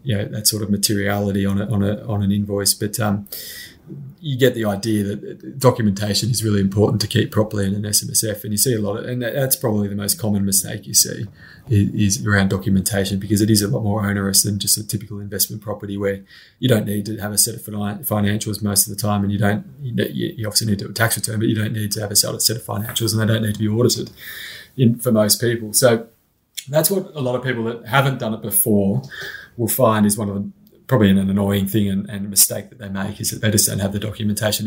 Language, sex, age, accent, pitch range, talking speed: English, male, 20-39, Australian, 100-115 Hz, 250 wpm